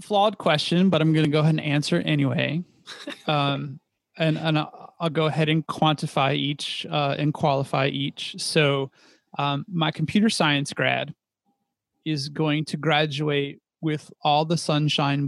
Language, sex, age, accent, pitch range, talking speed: English, male, 30-49, American, 140-165 Hz, 150 wpm